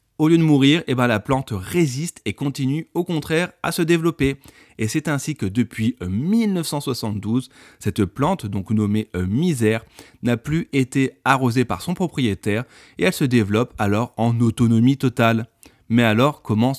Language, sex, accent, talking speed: French, male, French, 160 wpm